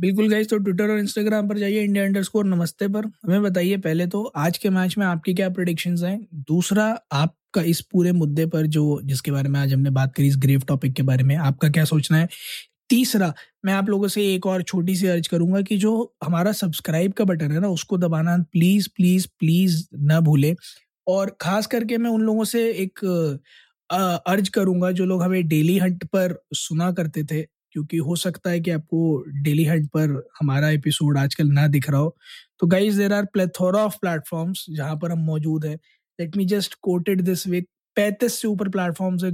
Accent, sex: native, male